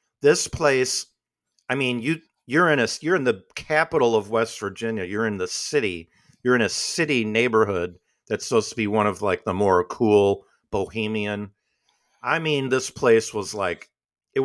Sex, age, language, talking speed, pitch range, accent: male, 50-69, English, 175 wpm, 105-140 Hz, American